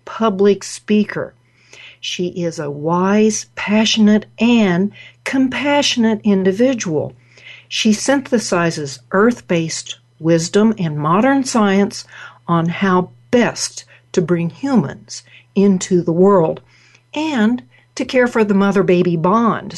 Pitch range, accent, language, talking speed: 160-215 Hz, American, English, 100 wpm